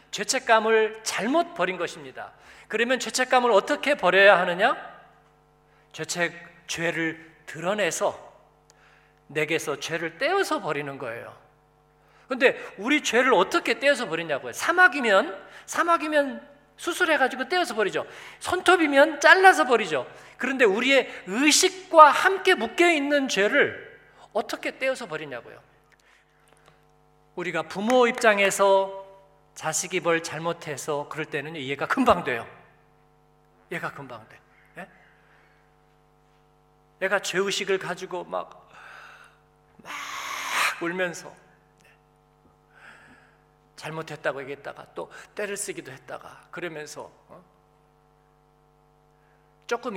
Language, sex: Korean, male